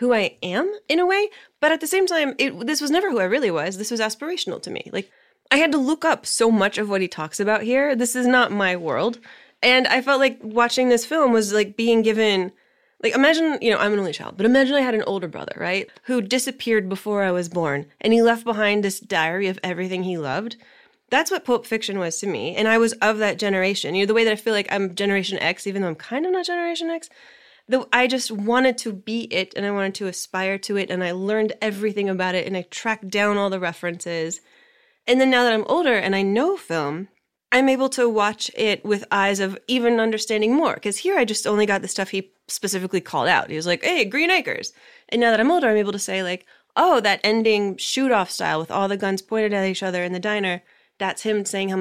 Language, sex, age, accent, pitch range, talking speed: English, female, 20-39, American, 195-250 Hz, 245 wpm